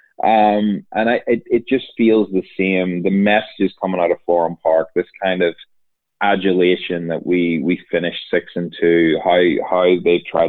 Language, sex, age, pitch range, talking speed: English, male, 30-49, 85-100 Hz, 175 wpm